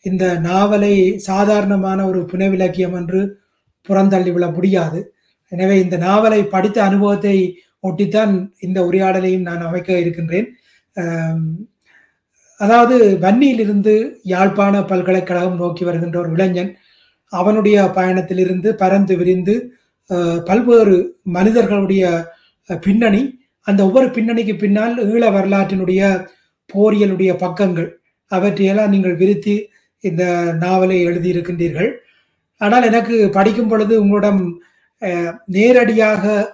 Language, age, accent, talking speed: Tamil, 30-49, native, 90 wpm